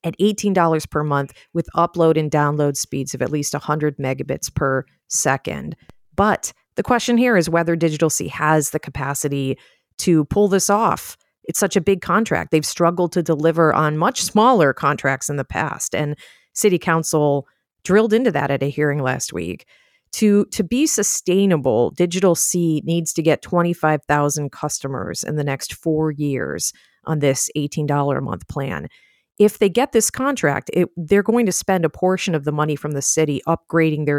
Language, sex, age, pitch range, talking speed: English, female, 40-59, 145-195 Hz, 175 wpm